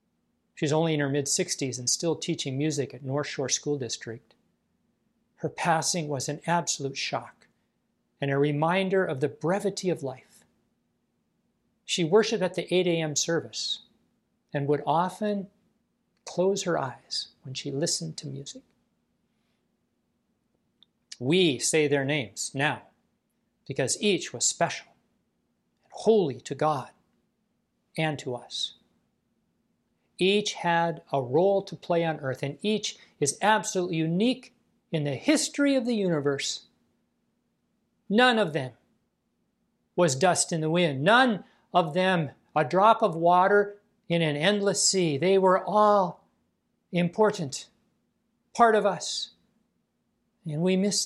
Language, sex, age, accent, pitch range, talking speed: English, male, 50-69, American, 145-195 Hz, 130 wpm